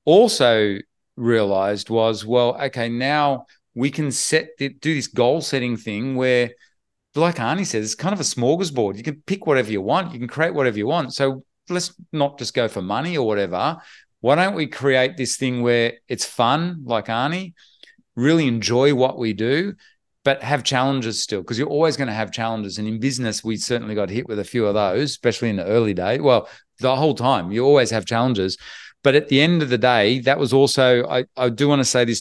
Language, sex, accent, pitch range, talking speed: English, male, Australian, 110-135 Hz, 210 wpm